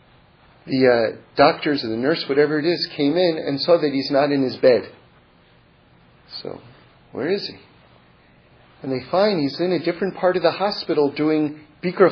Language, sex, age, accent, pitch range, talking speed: English, male, 40-59, American, 145-195 Hz, 180 wpm